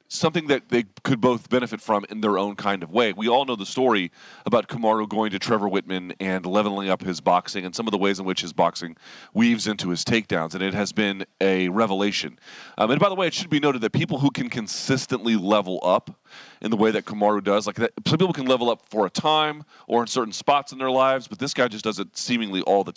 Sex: male